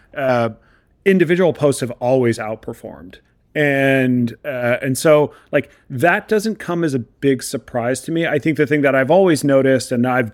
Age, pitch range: 30-49, 115-145 Hz